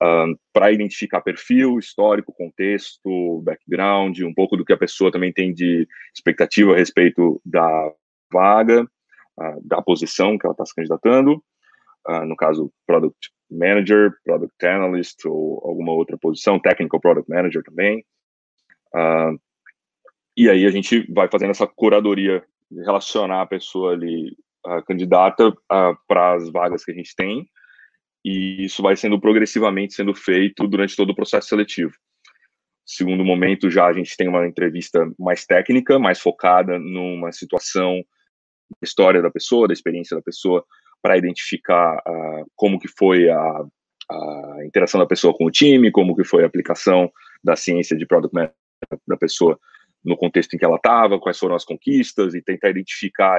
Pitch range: 85-100 Hz